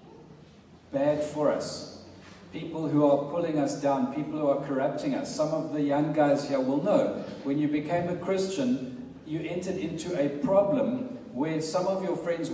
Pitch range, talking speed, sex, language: 140-170 Hz, 175 wpm, male, English